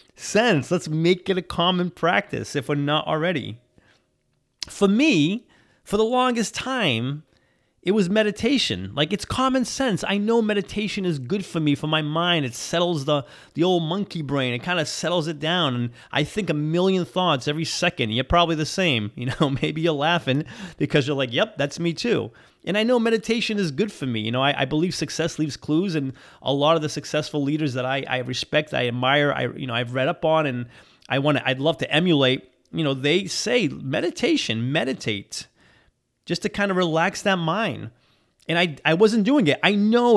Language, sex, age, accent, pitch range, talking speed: English, male, 30-49, American, 135-190 Hz, 205 wpm